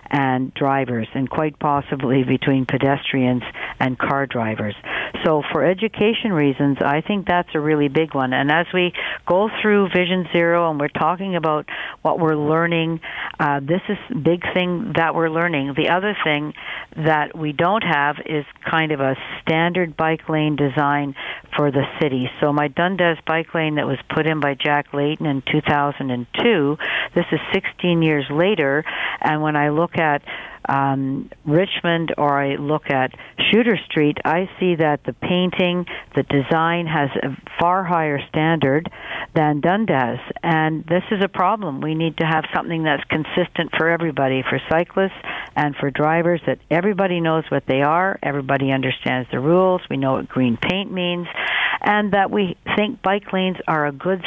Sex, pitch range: female, 145-175 Hz